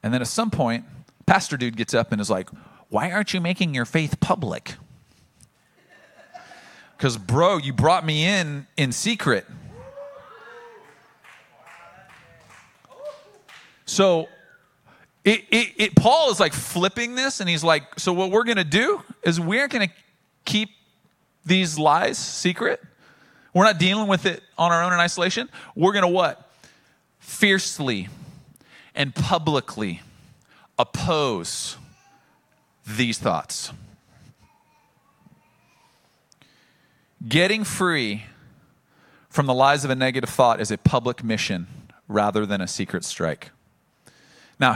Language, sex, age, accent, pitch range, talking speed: English, male, 40-59, American, 125-185 Hz, 125 wpm